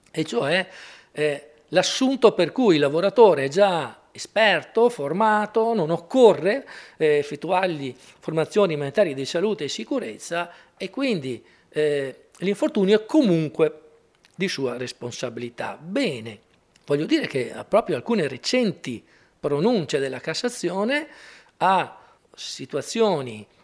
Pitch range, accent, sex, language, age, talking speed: 140-210 Hz, native, male, Italian, 40-59, 110 wpm